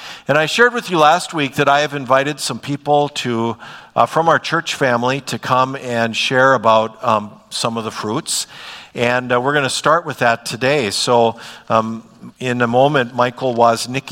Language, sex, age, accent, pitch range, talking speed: English, male, 50-69, American, 110-130 Hz, 190 wpm